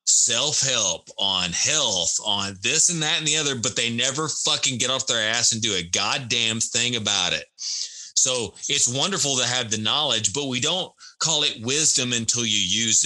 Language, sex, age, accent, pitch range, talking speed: English, male, 30-49, American, 105-140 Hz, 195 wpm